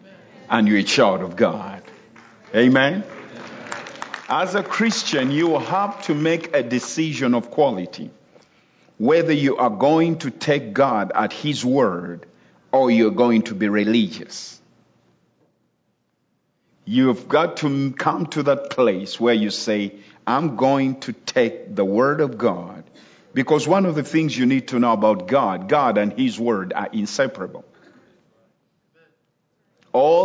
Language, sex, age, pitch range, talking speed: English, male, 50-69, 110-155 Hz, 140 wpm